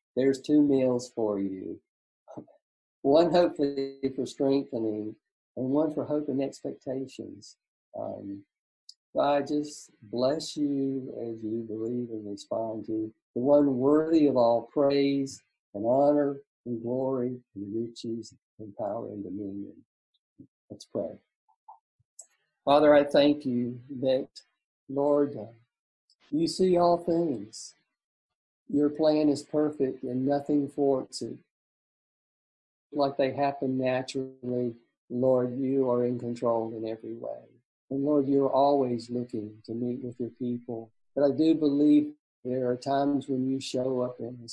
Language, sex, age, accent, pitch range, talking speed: English, male, 50-69, American, 120-145 Hz, 130 wpm